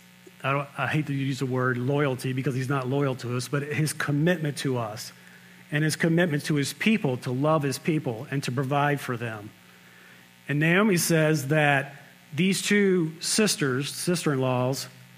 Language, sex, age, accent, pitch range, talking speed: English, male, 40-59, American, 125-155 Hz, 165 wpm